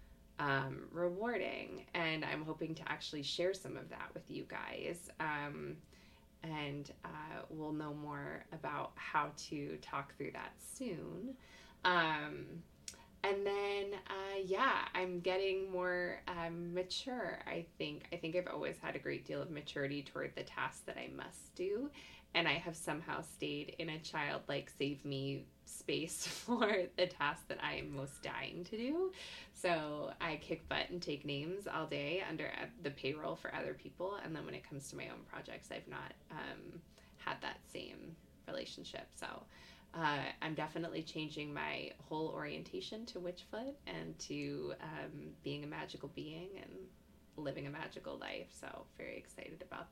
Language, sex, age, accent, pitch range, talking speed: English, female, 20-39, American, 145-185 Hz, 160 wpm